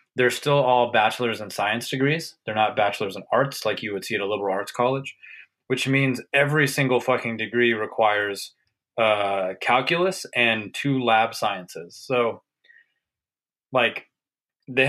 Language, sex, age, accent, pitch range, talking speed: English, male, 20-39, American, 110-135 Hz, 150 wpm